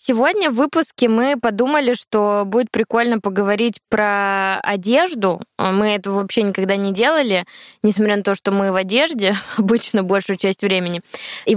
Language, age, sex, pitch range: Russian, 20-39, female, 195-240 Hz